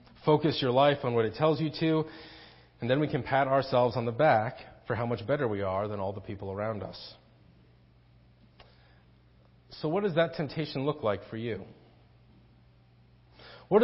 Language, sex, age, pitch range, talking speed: English, male, 30-49, 100-135 Hz, 175 wpm